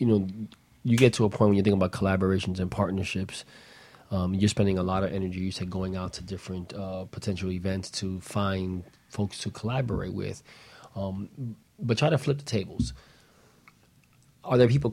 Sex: male